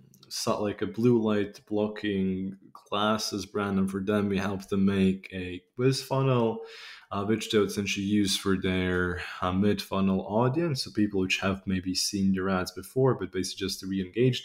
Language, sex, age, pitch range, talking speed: English, male, 20-39, 95-110 Hz, 180 wpm